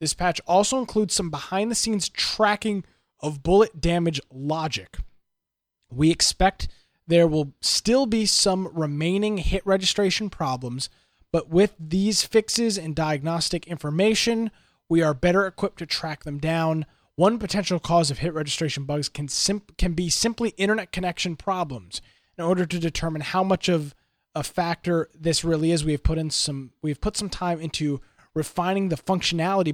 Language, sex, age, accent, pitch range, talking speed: English, male, 20-39, American, 145-185 Hz, 155 wpm